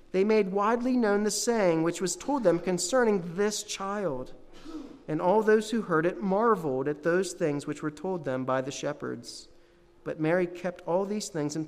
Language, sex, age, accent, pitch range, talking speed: English, male, 40-59, American, 135-185 Hz, 190 wpm